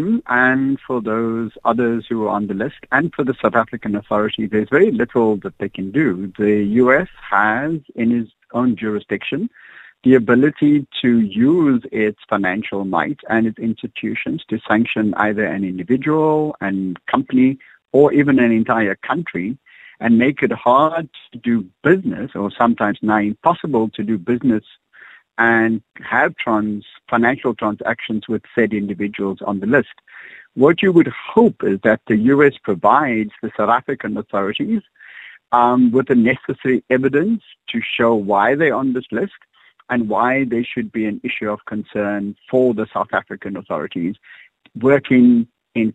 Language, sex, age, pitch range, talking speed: English, male, 50-69, 105-130 Hz, 155 wpm